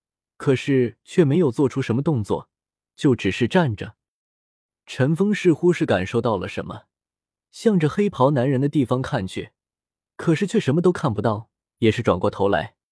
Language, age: Chinese, 20-39